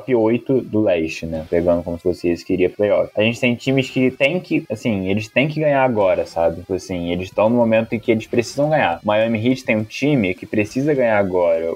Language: Portuguese